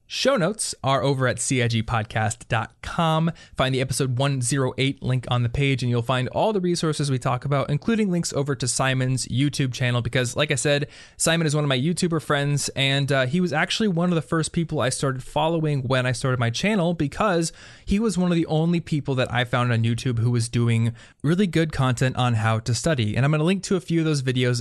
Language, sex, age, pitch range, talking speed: English, male, 20-39, 120-150 Hz, 225 wpm